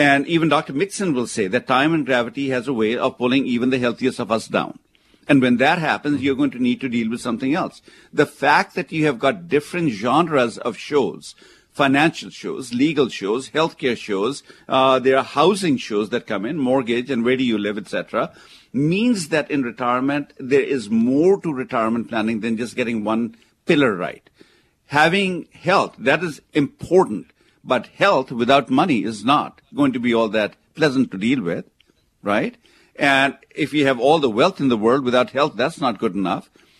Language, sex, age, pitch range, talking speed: English, male, 50-69, 120-160 Hz, 195 wpm